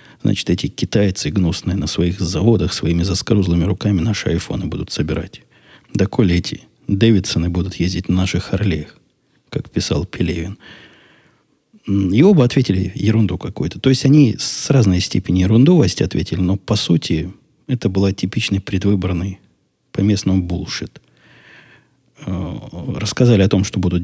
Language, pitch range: Russian, 90-115 Hz